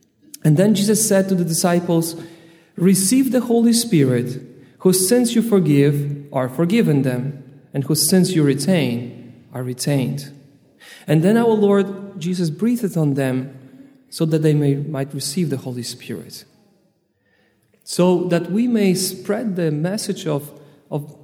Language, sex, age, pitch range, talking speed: English, male, 40-59, 140-180 Hz, 145 wpm